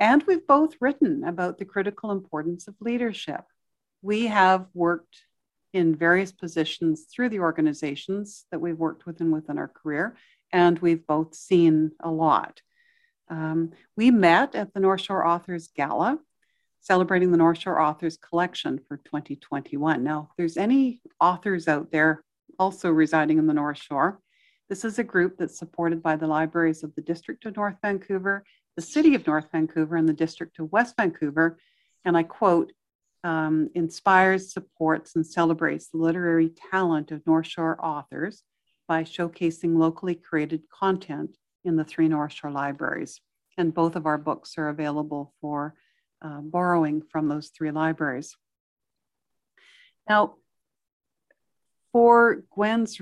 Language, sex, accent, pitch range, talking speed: English, female, American, 160-195 Hz, 150 wpm